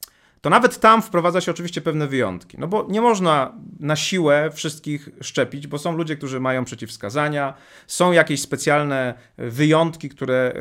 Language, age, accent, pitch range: Polish, 30-49, native, 135-180 Hz